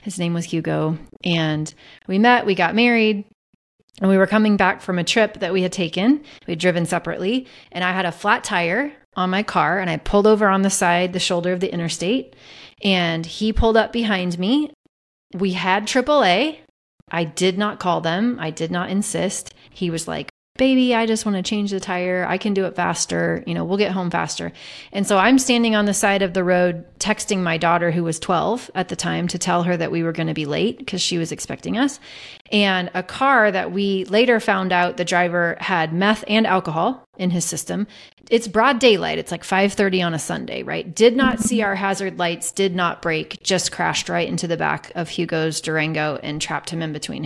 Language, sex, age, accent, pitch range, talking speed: English, female, 30-49, American, 175-215 Hz, 215 wpm